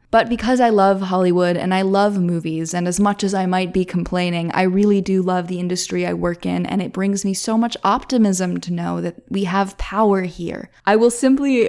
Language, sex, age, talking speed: English, female, 20-39, 220 wpm